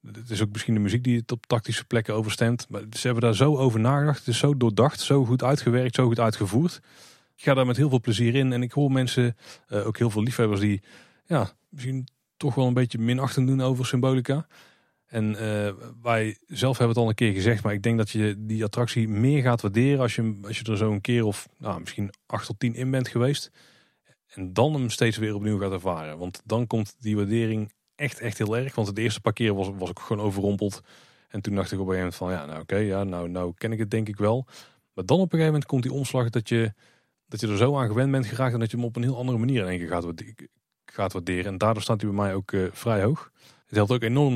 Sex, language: male, Dutch